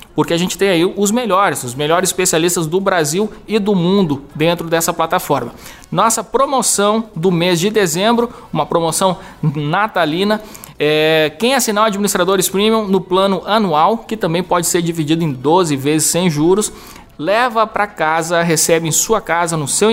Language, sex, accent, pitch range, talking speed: Portuguese, male, Brazilian, 155-190 Hz, 165 wpm